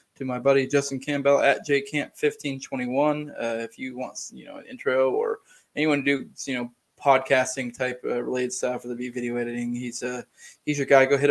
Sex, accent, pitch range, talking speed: male, American, 125-155 Hz, 195 wpm